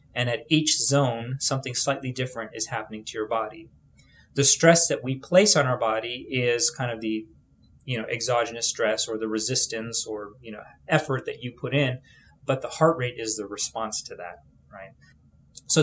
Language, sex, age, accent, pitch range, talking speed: English, male, 30-49, American, 110-140 Hz, 190 wpm